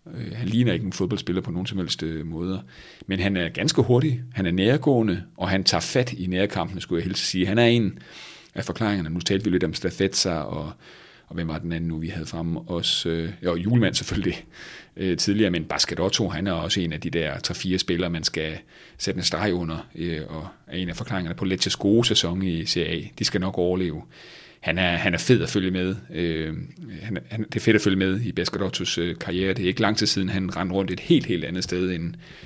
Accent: native